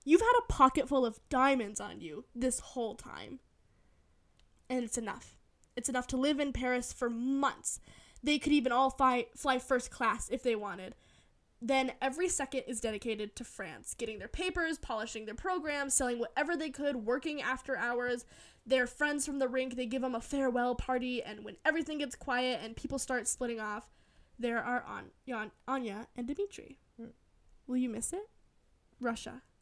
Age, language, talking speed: 10-29, English, 170 wpm